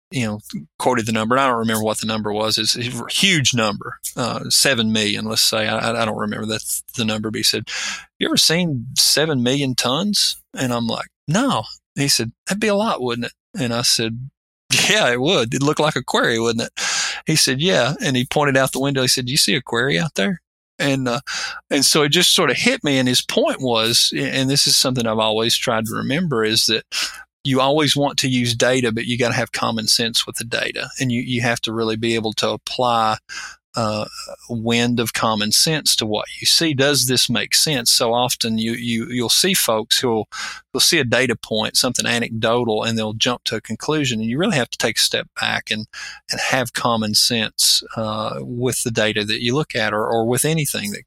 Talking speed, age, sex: 230 wpm, 40-59, male